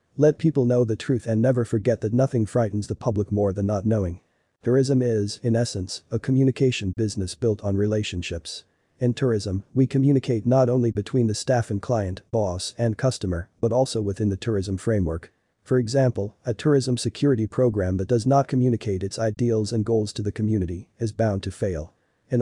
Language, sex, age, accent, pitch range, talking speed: English, male, 40-59, American, 100-125 Hz, 185 wpm